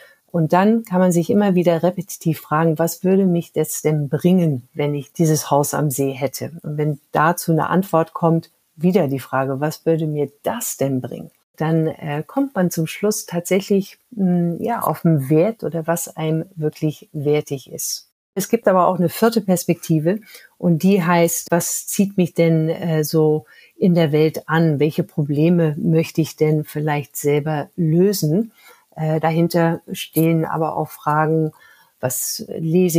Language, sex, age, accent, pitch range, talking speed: German, female, 50-69, German, 150-175 Hz, 165 wpm